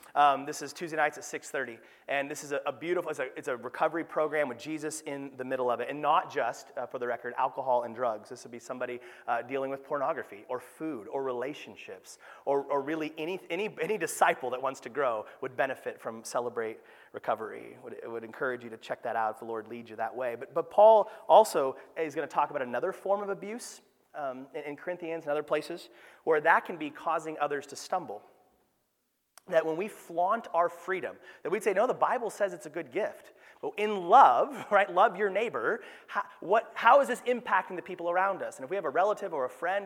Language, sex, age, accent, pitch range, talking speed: English, male, 30-49, American, 140-205 Hz, 225 wpm